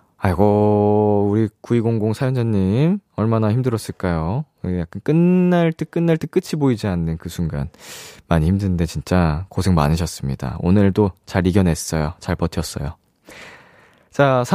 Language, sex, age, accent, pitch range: Korean, male, 20-39, native, 90-150 Hz